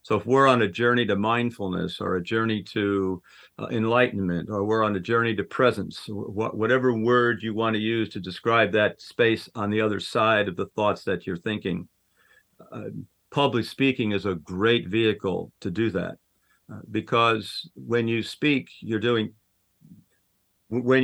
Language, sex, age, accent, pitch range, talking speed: English, male, 50-69, American, 105-125 Hz, 170 wpm